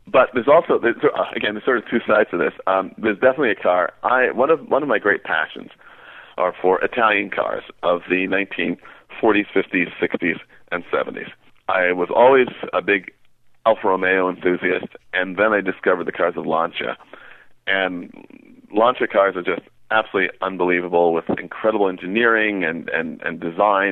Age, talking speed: 40-59, 165 wpm